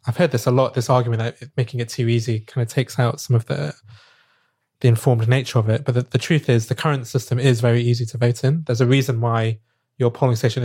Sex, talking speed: male, 255 wpm